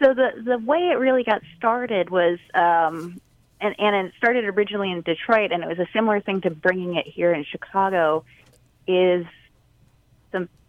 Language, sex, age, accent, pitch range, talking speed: English, female, 30-49, American, 155-195 Hz, 175 wpm